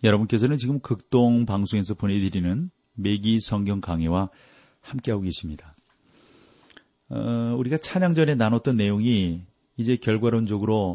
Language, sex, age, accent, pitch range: Korean, male, 40-59, native, 95-130 Hz